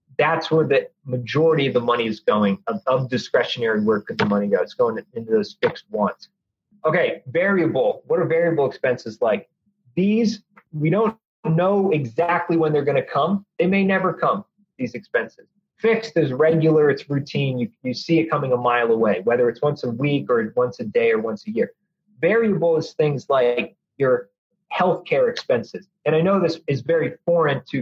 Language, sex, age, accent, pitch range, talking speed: English, male, 30-49, American, 145-200 Hz, 190 wpm